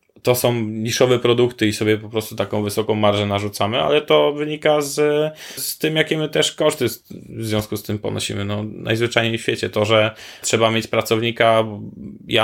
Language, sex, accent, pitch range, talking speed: Polish, male, native, 105-115 Hz, 180 wpm